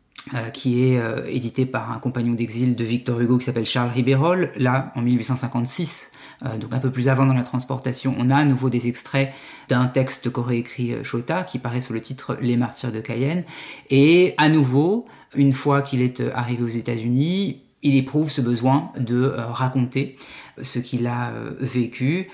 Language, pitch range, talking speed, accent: French, 125-140 Hz, 175 wpm, French